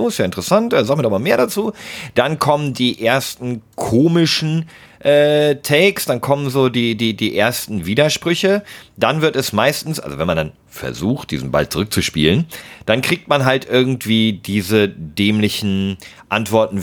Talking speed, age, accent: 155 wpm, 40-59, German